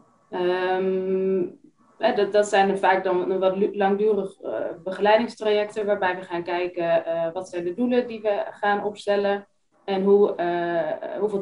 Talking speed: 125 wpm